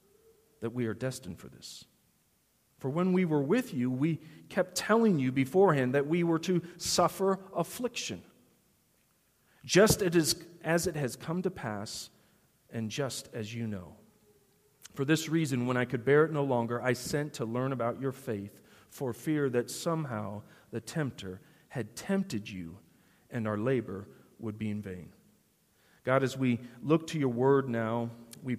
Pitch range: 110-150 Hz